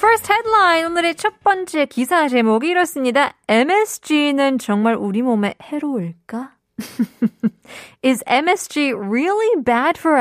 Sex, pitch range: female, 215-330 Hz